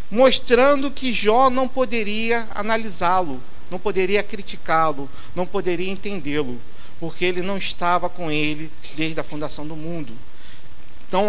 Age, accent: 50-69, Brazilian